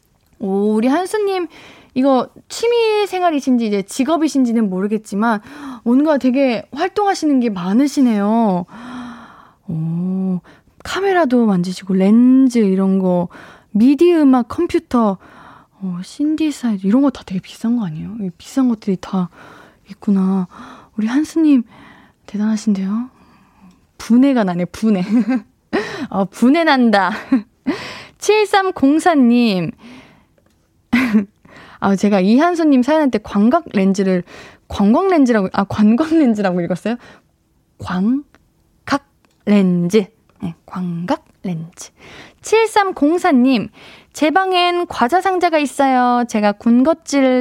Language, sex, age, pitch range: Korean, female, 20-39, 200-285 Hz